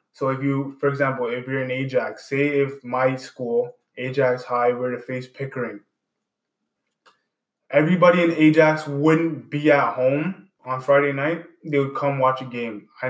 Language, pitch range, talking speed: English, 130-150 Hz, 165 wpm